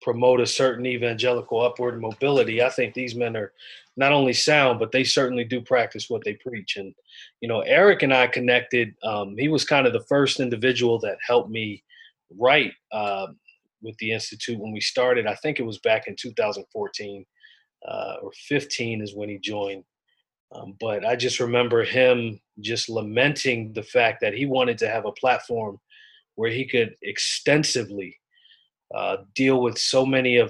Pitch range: 115-130 Hz